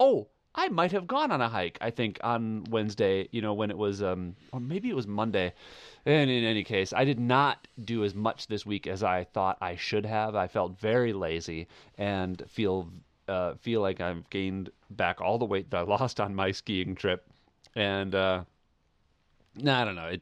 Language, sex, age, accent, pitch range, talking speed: English, male, 30-49, American, 100-130 Hz, 205 wpm